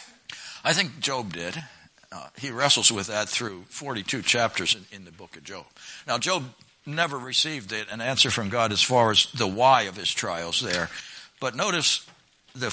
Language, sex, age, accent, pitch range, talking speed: English, male, 60-79, American, 105-140 Hz, 180 wpm